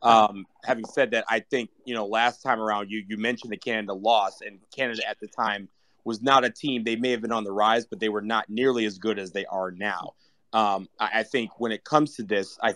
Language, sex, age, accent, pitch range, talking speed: English, male, 30-49, American, 105-135 Hz, 255 wpm